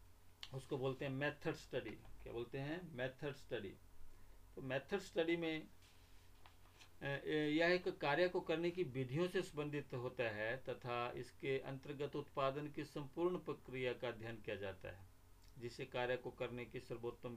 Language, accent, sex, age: Hindi, native, male, 50-69